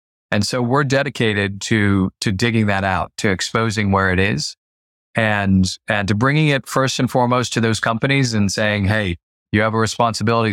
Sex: male